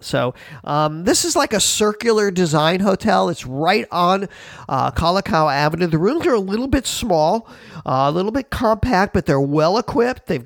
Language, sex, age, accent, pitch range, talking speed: English, male, 50-69, American, 145-185 Hz, 180 wpm